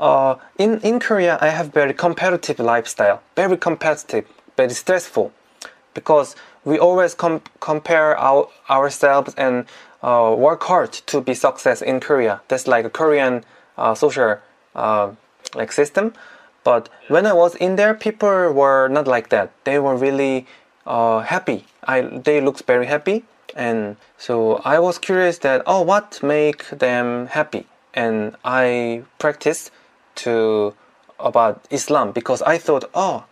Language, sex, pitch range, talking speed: English, male, 130-175 Hz, 145 wpm